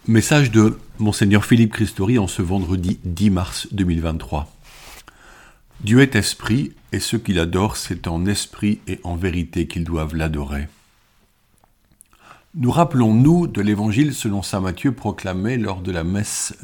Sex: male